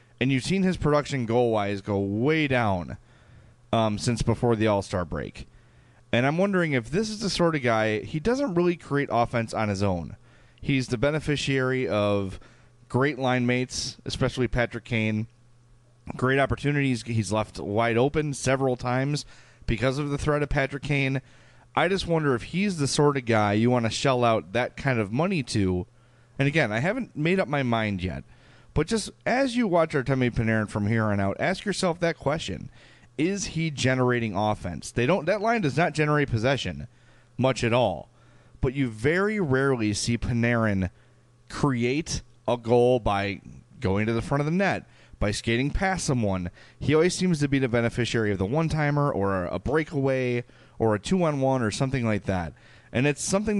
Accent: American